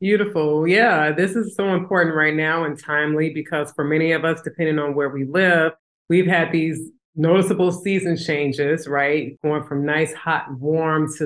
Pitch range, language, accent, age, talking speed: 160-195 Hz, English, American, 30-49, 175 wpm